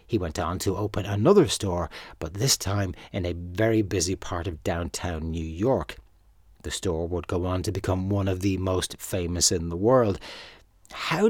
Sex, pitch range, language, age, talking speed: male, 90-115 Hz, English, 60-79, 185 wpm